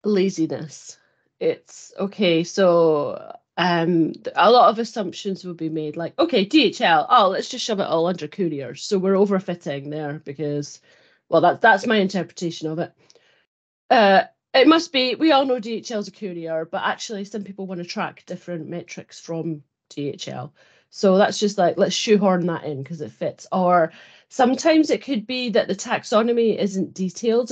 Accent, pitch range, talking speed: British, 170-220 Hz, 170 wpm